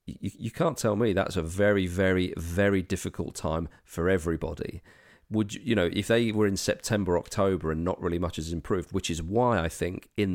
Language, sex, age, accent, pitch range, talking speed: English, male, 40-59, British, 90-120 Hz, 195 wpm